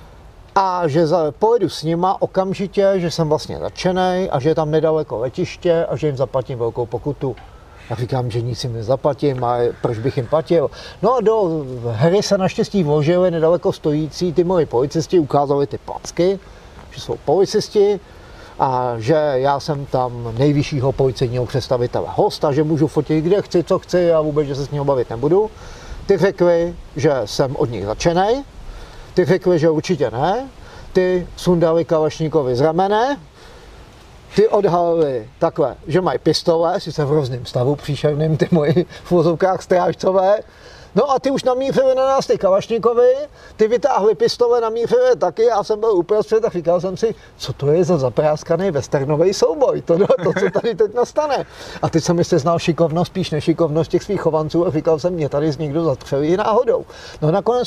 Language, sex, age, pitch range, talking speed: Czech, male, 50-69, 150-200 Hz, 175 wpm